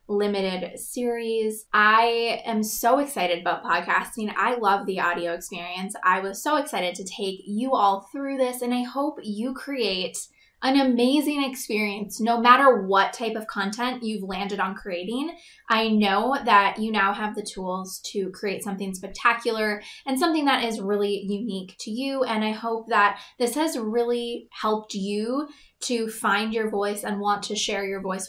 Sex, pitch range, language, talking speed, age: female, 200-240 Hz, English, 170 wpm, 20-39